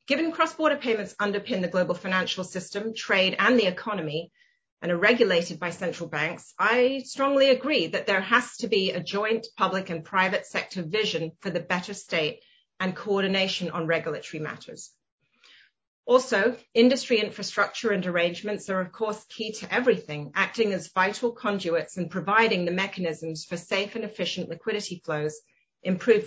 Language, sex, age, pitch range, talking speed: English, female, 40-59, 180-225 Hz, 155 wpm